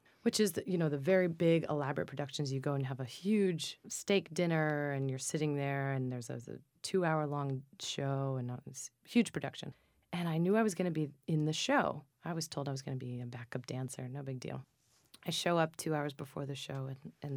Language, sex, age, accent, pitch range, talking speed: English, female, 30-49, American, 130-165 Hz, 235 wpm